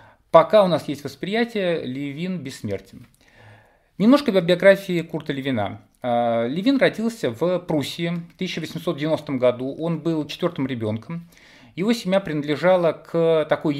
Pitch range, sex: 140-190 Hz, male